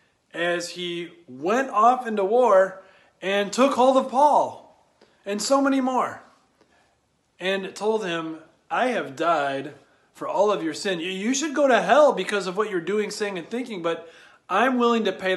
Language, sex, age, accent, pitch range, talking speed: English, male, 30-49, American, 160-210 Hz, 170 wpm